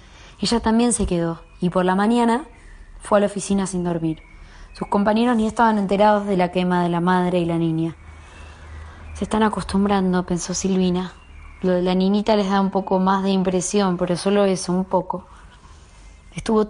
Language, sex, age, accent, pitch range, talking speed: Spanish, female, 20-39, Argentinian, 165-200 Hz, 180 wpm